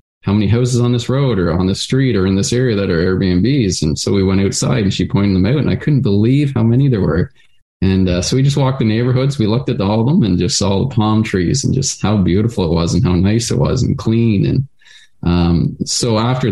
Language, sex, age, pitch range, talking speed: English, male, 20-39, 90-120 Hz, 260 wpm